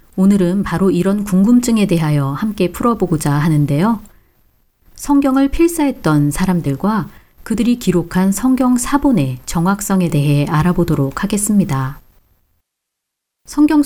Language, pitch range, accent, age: Korean, 155-230 Hz, native, 40-59